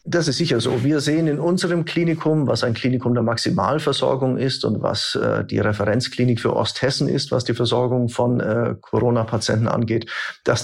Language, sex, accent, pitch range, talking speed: German, male, German, 120-140 Hz, 175 wpm